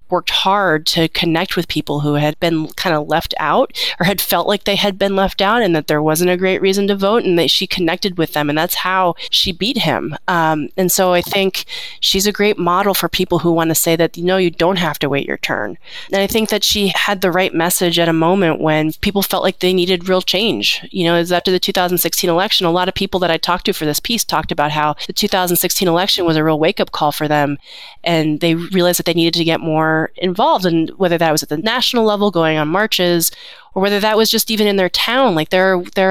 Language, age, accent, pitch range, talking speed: English, 30-49, American, 155-190 Hz, 255 wpm